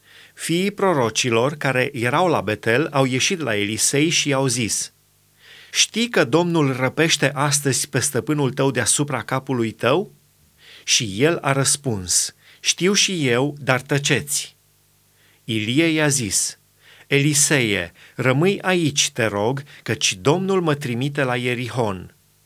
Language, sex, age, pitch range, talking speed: Romanian, male, 30-49, 120-150 Hz, 125 wpm